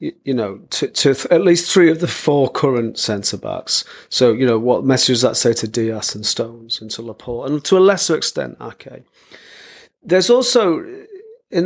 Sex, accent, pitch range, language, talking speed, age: male, British, 125-175 Hz, English, 190 wpm, 40-59